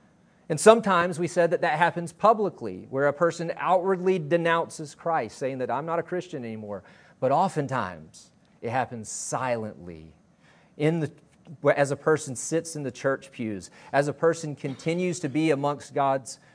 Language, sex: English, male